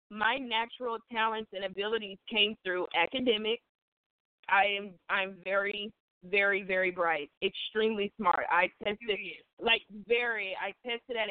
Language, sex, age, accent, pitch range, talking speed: English, female, 20-39, American, 185-225 Hz, 125 wpm